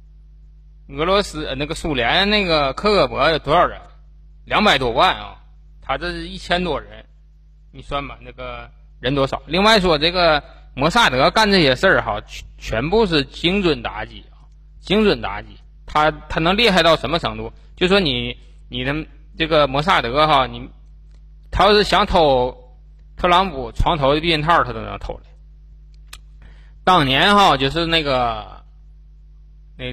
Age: 20-39